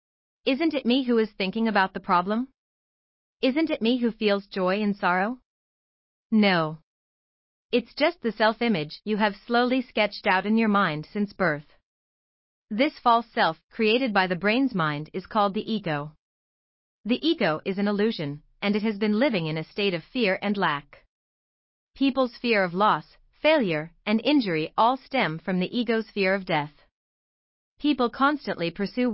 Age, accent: 30-49, American